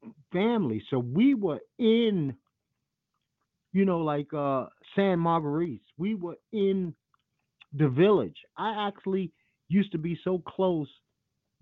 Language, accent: English, American